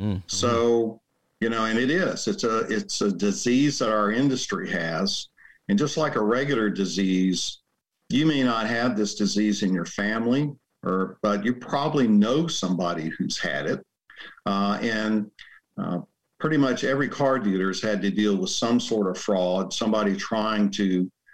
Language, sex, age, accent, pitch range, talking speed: English, male, 50-69, American, 95-115 Hz, 165 wpm